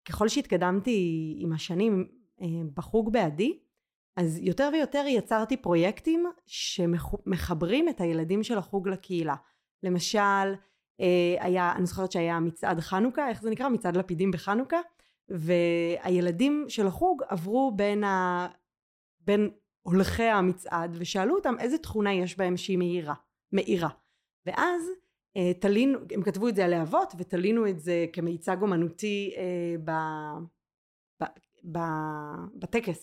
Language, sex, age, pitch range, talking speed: Hebrew, female, 30-49, 175-210 Hz, 115 wpm